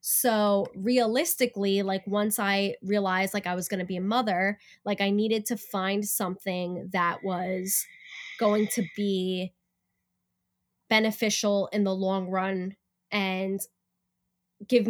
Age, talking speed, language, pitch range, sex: 10-29, 130 wpm, English, 185-215 Hz, female